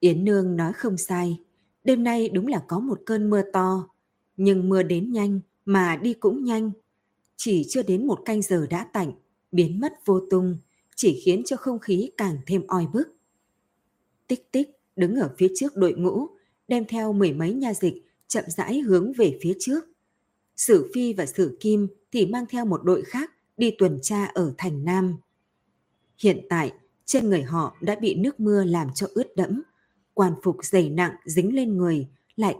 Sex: female